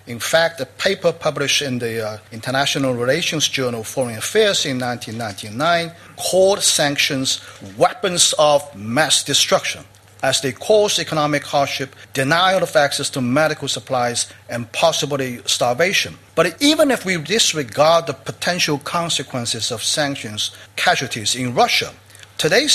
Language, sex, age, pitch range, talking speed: English, male, 50-69, 125-165 Hz, 130 wpm